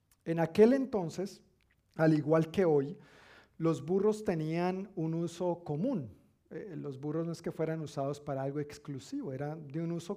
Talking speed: 165 wpm